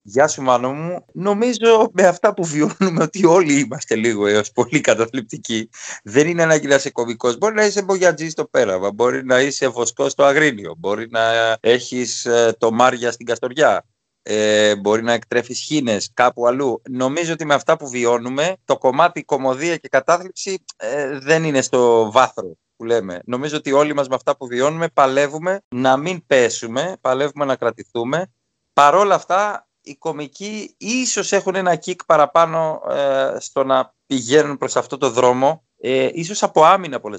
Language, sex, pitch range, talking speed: Greek, male, 120-160 Hz, 170 wpm